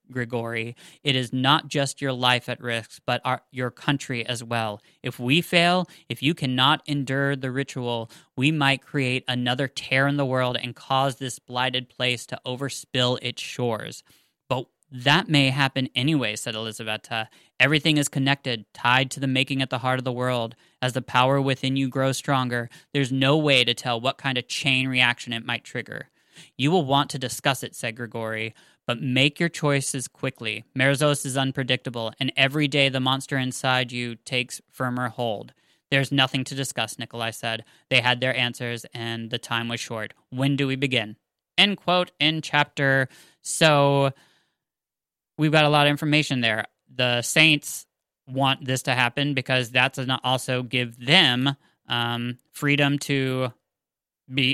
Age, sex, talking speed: 10-29, male, 170 wpm